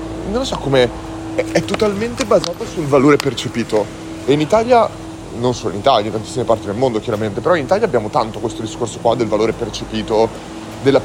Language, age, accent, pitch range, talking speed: Italian, 30-49, native, 105-125 Hz, 195 wpm